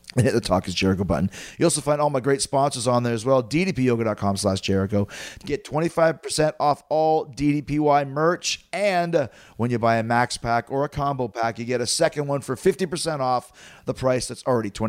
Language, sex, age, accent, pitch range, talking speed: English, male, 30-49, American, 120-150 Hz, 200 wpm